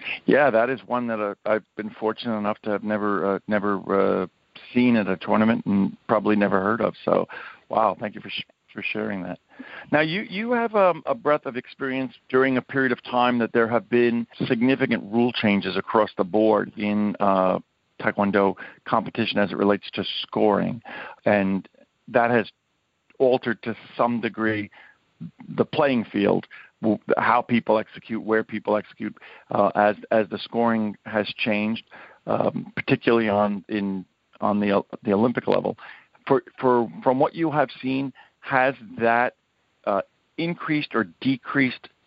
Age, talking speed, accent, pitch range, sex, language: 50-69, 160 wpm, American, 105-125 Hz, male, English